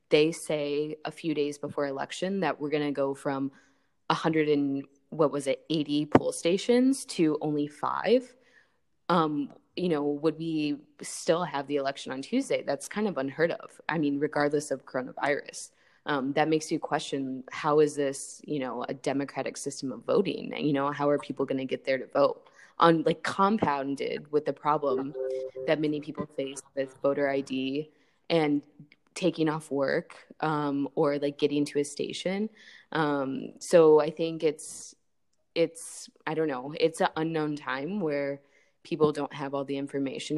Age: 20-39